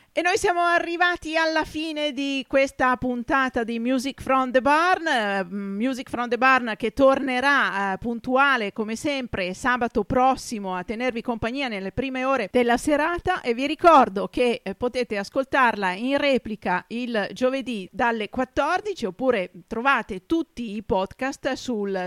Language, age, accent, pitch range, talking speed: Italian, 40-59, native, 220-285 Hz, 140 wpm